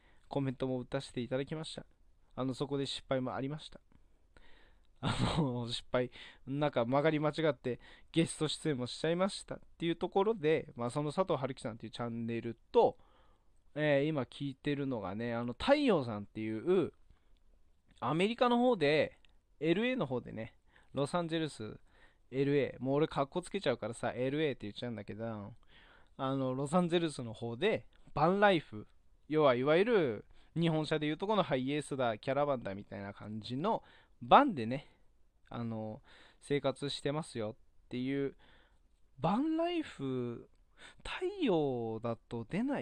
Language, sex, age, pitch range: Japanese, male, 20-39, 115-160 Hz